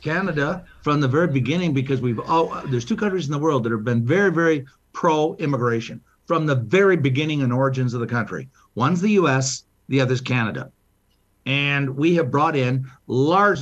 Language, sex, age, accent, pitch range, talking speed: English, male, 60-79, American, 135-175 Hz, 190 wpm